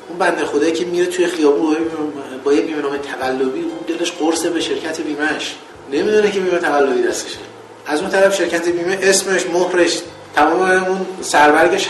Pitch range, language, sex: 145-195 Hz, Persian, male